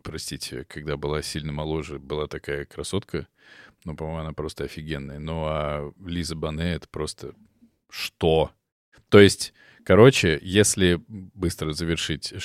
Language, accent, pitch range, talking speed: Russian, native, 80-100 Hz, 130 wpm